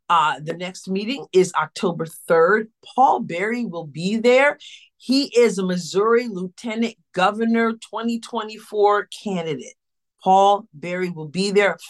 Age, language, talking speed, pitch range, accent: 40-59, English, 125 wpm, 165-225 Hz, American